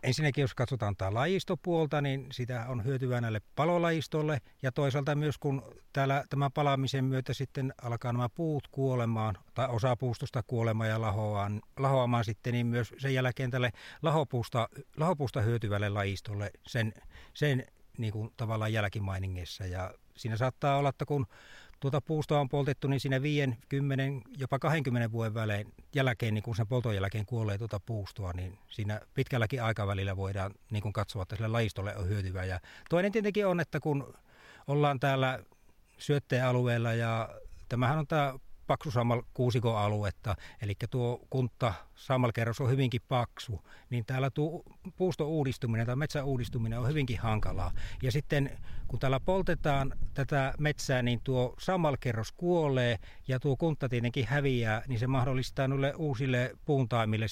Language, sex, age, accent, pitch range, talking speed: Finnish, male, 60-79, native, 110-140 Hz, 145 wpm